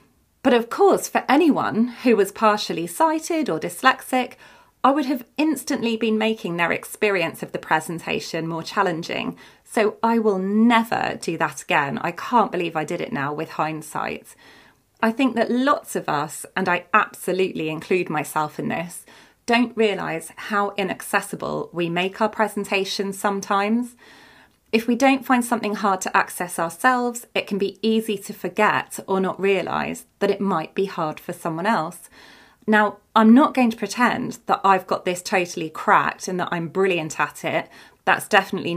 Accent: British